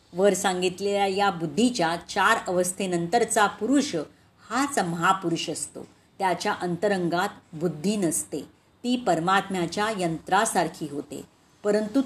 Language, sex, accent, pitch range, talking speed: Marathi, female, native, 175-235 Hz, 95 wpm